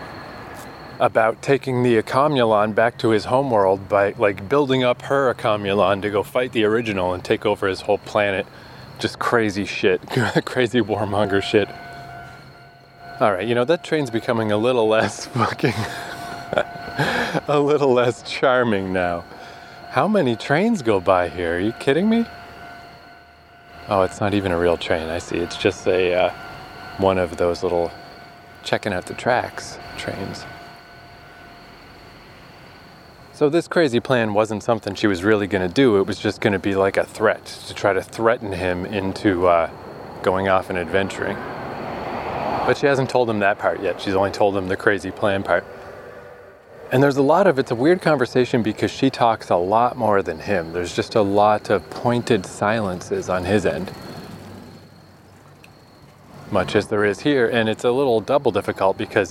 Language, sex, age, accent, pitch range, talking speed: English, male, 30-49, American, 100-125 Hz, 165 wpm